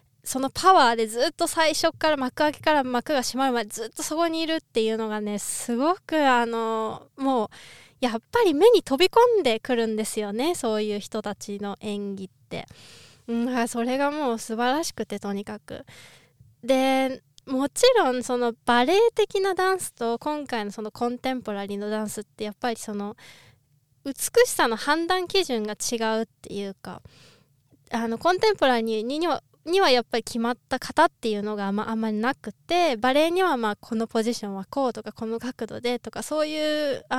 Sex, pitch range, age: female, 220-330 Hz, 20-39